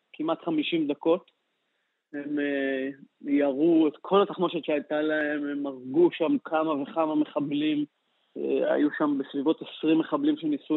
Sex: male